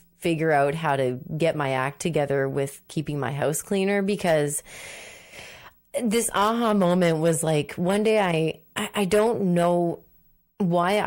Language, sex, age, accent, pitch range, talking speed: English, female, 30-49, American, 155-205 Hz, 140 wpm